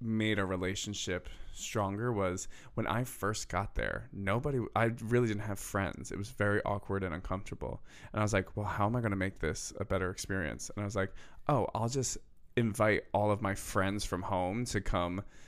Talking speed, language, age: 205 wpm, English, 20-39